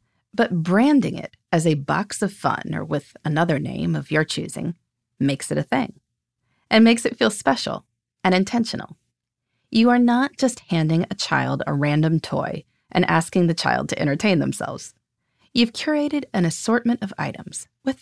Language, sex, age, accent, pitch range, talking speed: English, female, 30-49, American, 150-230 Hz, 165 wpm